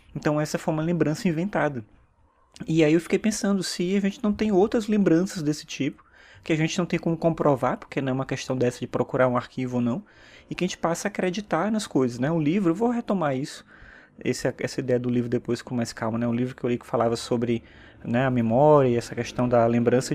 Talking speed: 240 wpm